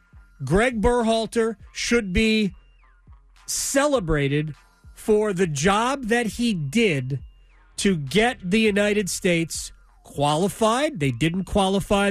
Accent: American